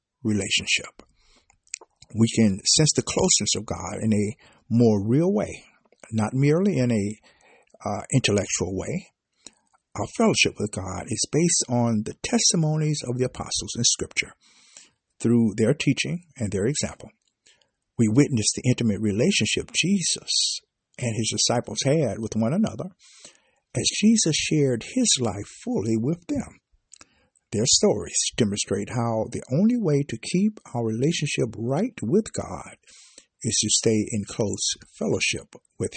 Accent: American